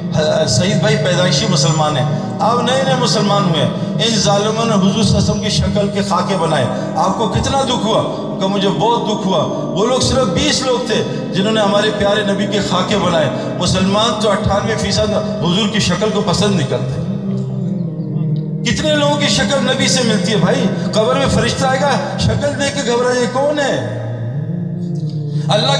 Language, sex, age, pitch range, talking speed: Urdu, male, 50-69, 160-210 Hz, 185 wpm